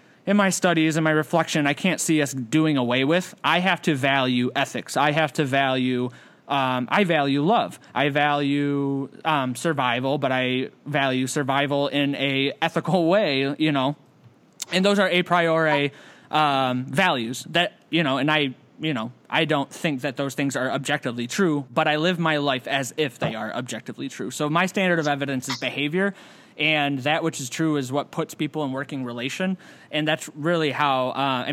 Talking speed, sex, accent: 185 wpm, male, American